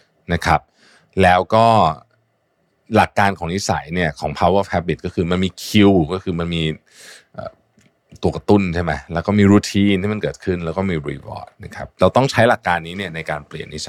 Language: Thai